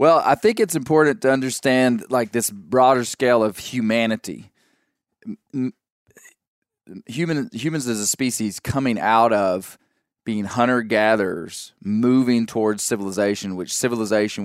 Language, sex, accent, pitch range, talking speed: English, male, American, 105-135 Hz, 125 wpm